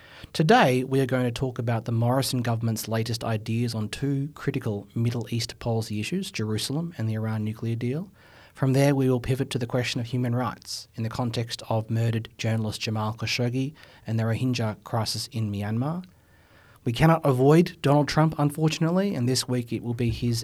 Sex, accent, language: male, Australian, English